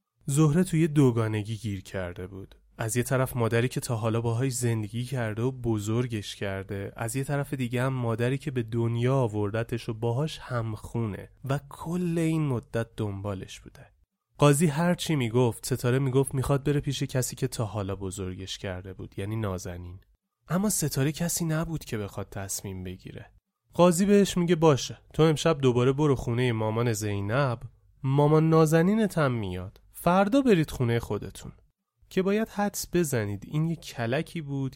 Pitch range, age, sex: 105-145 Hz, 30-49, male